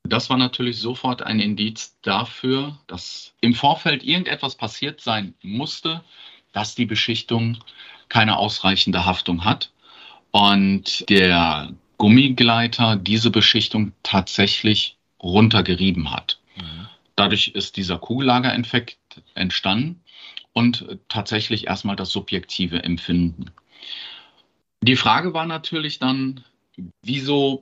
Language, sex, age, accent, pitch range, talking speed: German, male, 40-59, German, 95-120 Hz, 100 wpm